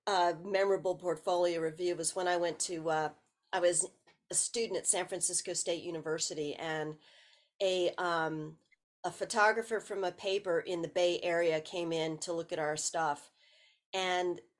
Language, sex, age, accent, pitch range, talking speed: English, female, 40-59, American, 165-215 Hz, 165 wpm